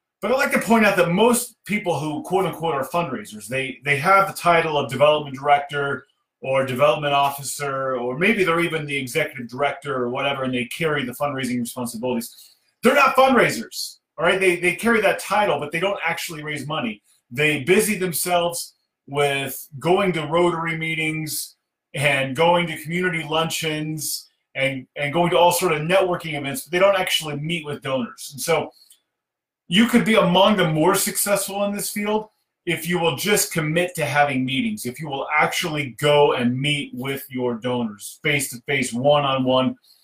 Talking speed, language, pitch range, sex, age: 175 wpm, English, 135-175 Hz, male, 30-49